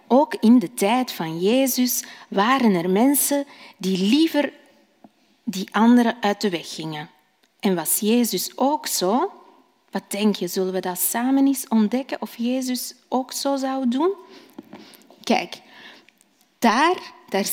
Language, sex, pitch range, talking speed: Dutch, female, 190-275 Hz, 135 wpm